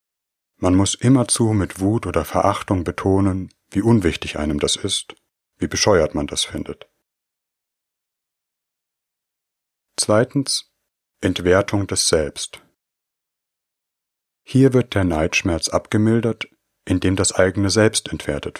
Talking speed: 105 wpm